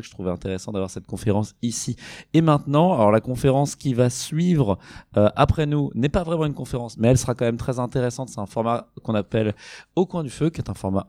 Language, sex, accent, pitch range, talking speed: French, male, French, 95-115 Hz, 240 wpm